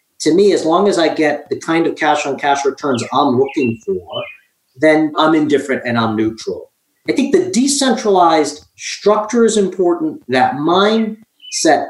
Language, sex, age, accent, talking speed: English, male, 40-59, American, 160 wpm